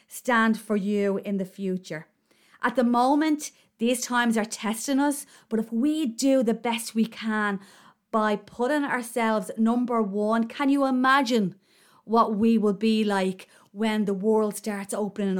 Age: 30-49